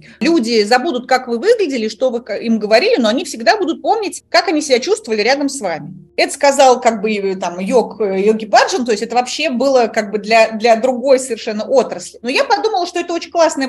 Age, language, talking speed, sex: 30-49, Russian, 200 wpm, female